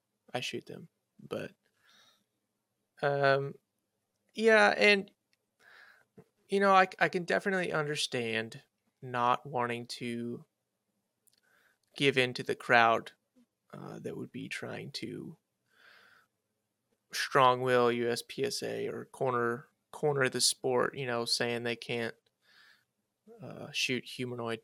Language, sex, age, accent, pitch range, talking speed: English, male, 20-39, American, 120-140 Hz, 105 wpm